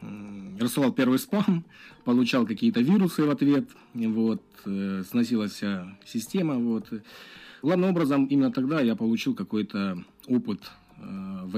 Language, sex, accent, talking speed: Ukrainian, male, native, 110 wpm